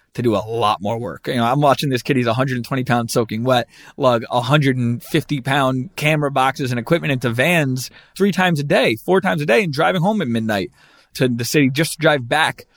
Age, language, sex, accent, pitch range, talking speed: 30-49, English, male, American, 120-150 Hz, 215 wpm